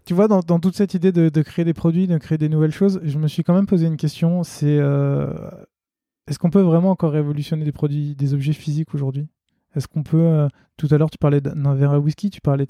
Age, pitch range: 20-39, 130-155 Hz